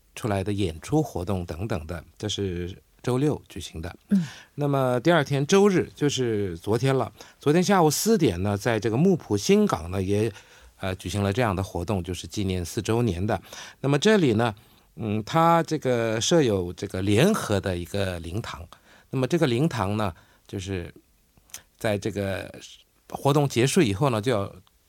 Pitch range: 100-140 Hz